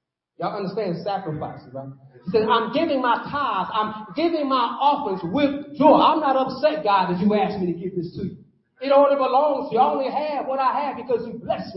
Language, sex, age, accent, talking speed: English, male, 40-59, American, 215 wpm